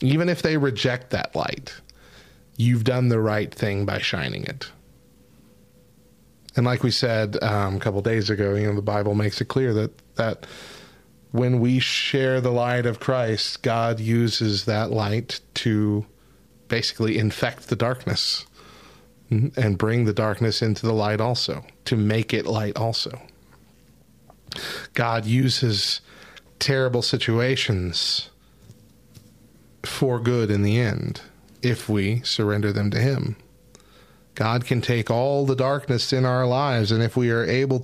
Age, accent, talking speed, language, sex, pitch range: 30-49, American, 145 wpm, English, male, 110-130 Hz